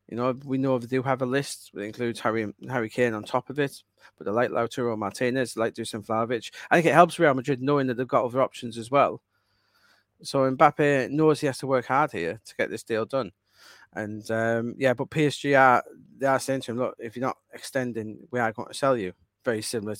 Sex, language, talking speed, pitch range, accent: male, English, 235 wpm, 110-130 Hz, British